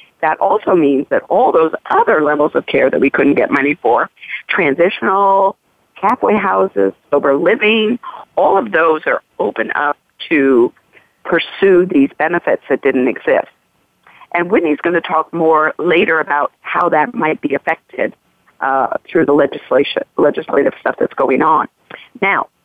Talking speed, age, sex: 150 wpm, 50-69, female